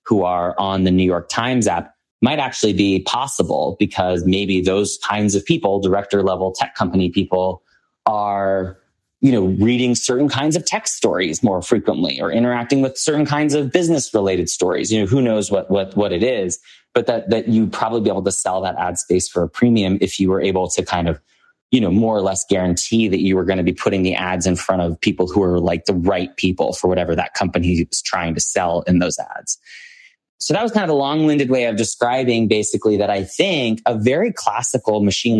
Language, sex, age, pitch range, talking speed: English, male, 20-39, 95-120 Hz, 215 wpm